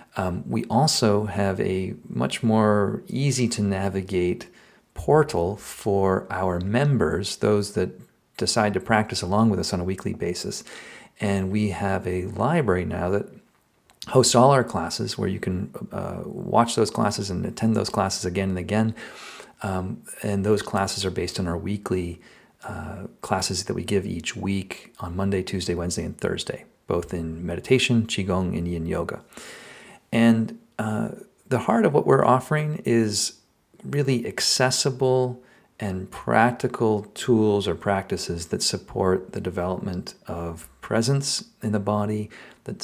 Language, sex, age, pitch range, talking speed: English, male, 40-59, 95-120 Hz, 150 wpm